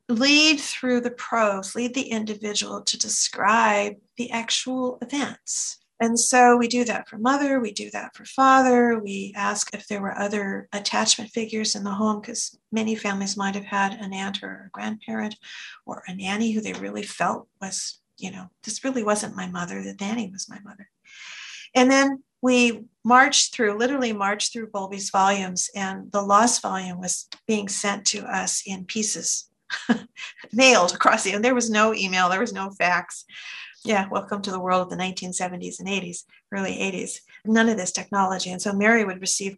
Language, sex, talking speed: English, female, 180 wpm